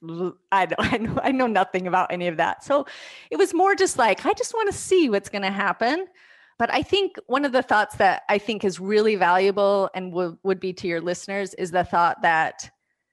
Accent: American